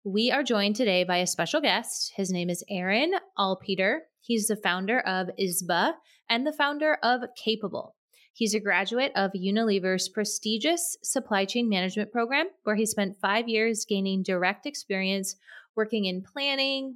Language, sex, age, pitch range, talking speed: English, female, 20-39, 190-240 Hz, 155 wpm